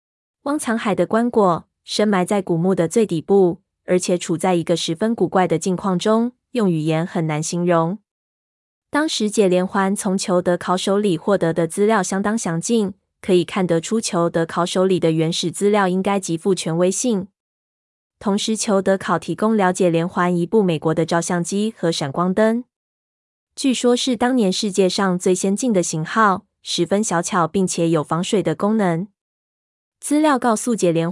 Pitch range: 170-215 Hz